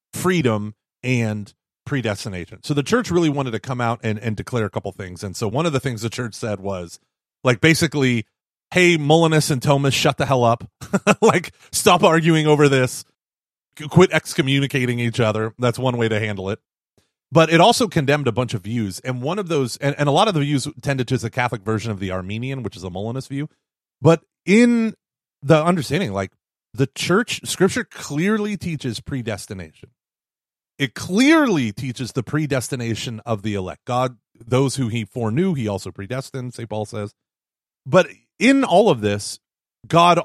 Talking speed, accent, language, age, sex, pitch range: 180 wpm, American, English, 30-49, male, 115-155 Hz